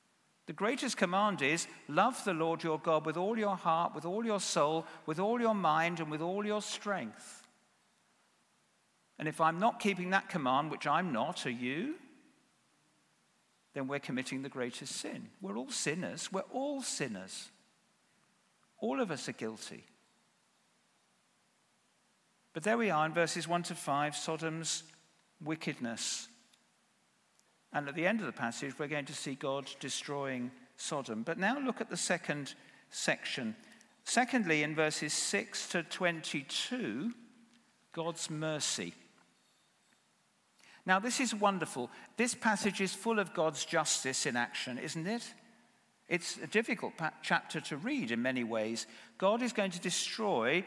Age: 50-69